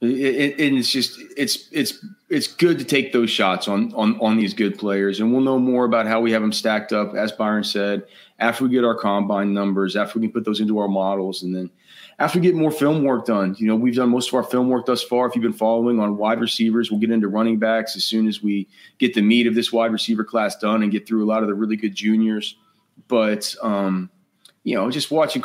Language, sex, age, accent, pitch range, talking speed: English, male, 30-49, American, 105-125 Hz, 255 wpm